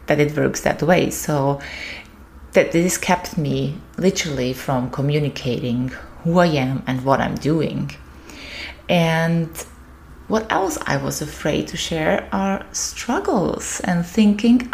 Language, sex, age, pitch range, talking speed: English, female, 20-39, 140-190 Hz, 130 wpm